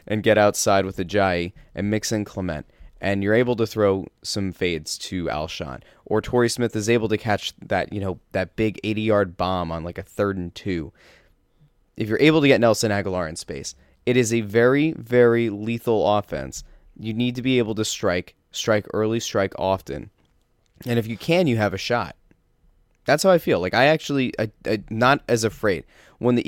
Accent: American